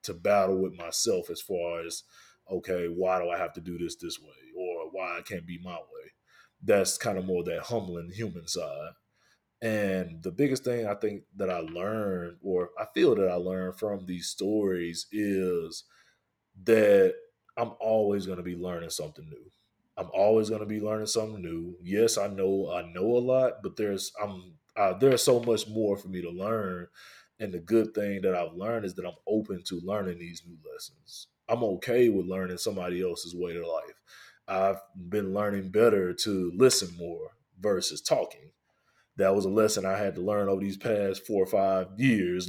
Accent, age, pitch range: American, 20-39, 90-110 Hz